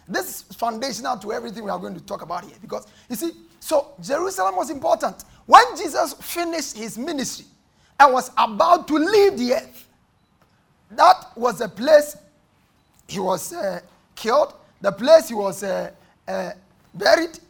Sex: male